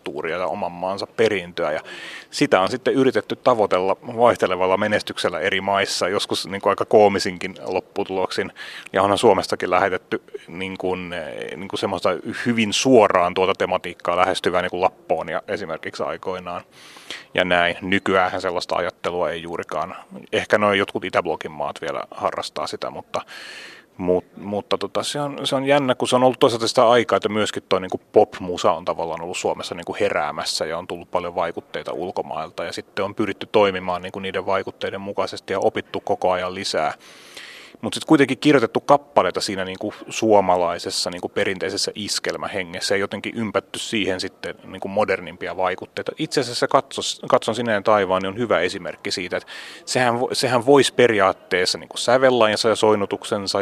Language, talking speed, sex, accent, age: Finnish, 160 wpm, male, native, 30-49